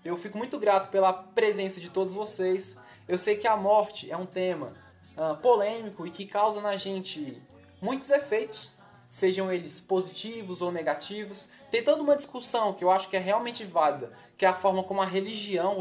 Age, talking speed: 20-39, 180 wpm